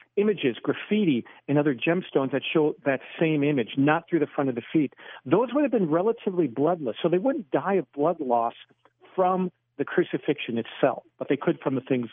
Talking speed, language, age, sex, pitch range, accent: 200 wpm, English, 50-69, male, 130-175 Hz, American